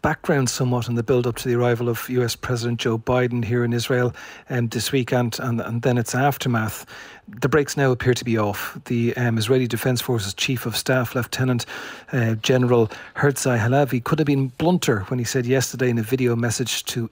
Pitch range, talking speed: 120-135 Hz, 200 wpm